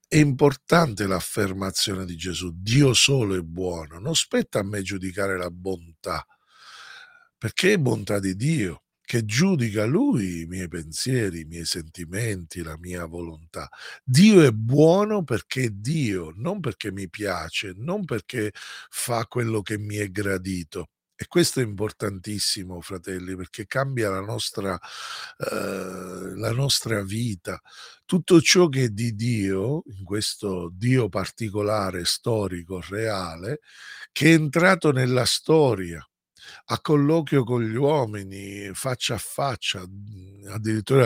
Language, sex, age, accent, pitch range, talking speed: Italian, male, 50-69, native, 95-130 Hz, 130 wpm